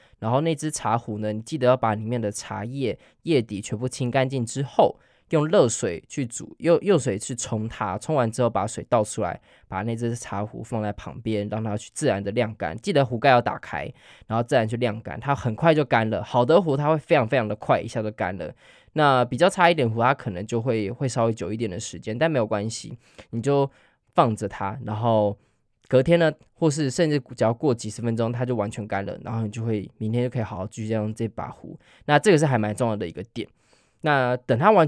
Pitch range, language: 110-135 Hz, Chinese